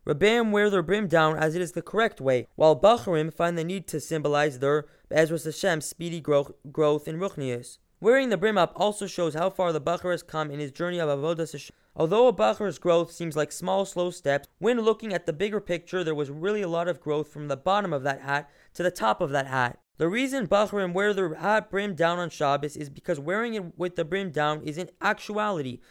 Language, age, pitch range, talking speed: English, 20-39, 150-190 Hz, 230 wpm